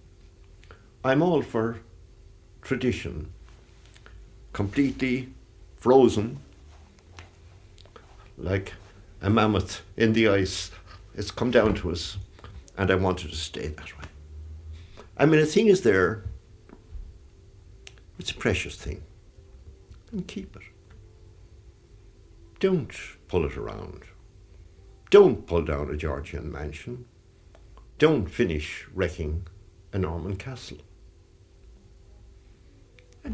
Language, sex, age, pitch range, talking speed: English, male, 60-79, 80-100 Hz, 100 wpm